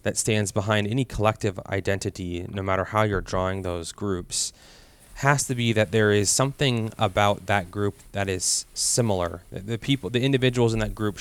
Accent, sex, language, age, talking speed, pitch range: American, male, English, 30-49, 175 wpm, 100-120 Hz